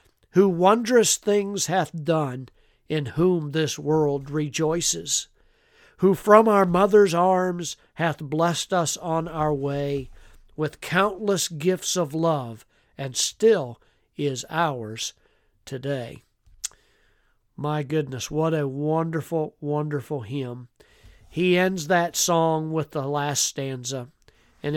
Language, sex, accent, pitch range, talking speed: English, male, American, 145-180 Hz, 115 wpm